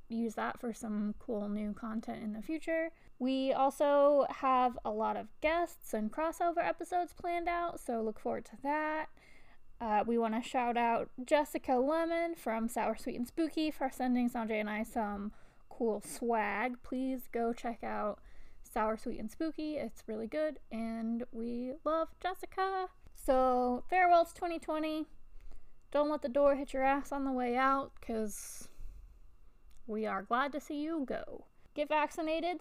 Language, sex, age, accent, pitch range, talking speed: English, female, 20-39, American, 225-295 Hz, 160 wpm